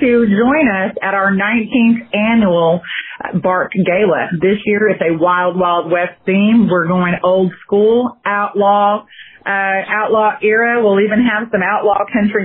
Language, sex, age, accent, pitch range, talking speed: English, female, 30-49, American, 190-225 Hz, 145 wpm